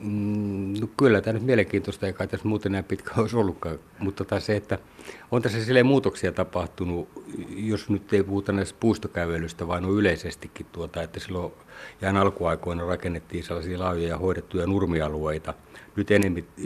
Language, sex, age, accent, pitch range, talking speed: Finnish, male, 60-79, native, 85-100 Hz, 150 wpm